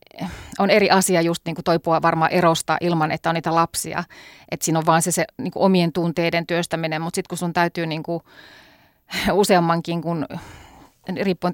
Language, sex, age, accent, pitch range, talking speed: Finnish, female, 30-49, native, 165-190 Hz, 165 wpm